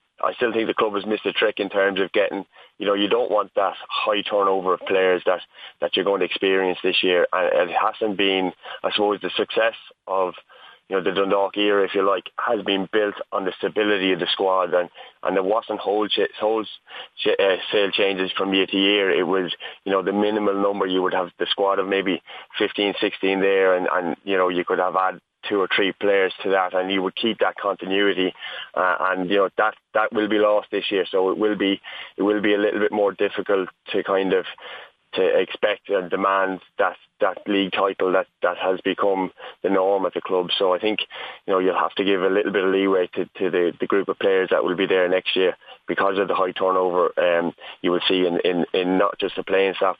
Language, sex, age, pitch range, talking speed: English, male, 20-39, 95-105 Hz, 235 wpm